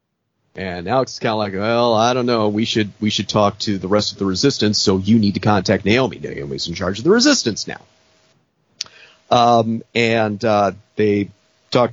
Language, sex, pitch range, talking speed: English, male, 100-125 Hz, 195 wpm